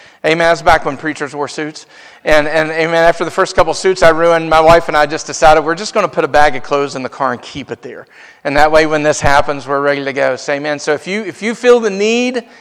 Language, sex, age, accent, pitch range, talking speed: English, male, 50-69, American, 160-215 Hz, 280 wpm